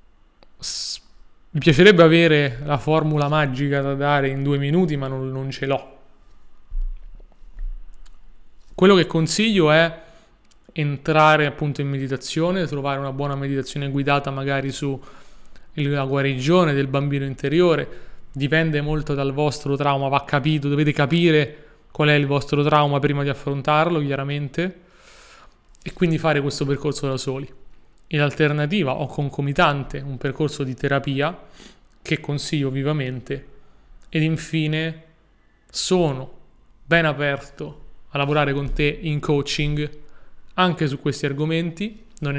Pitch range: 140-155 Hz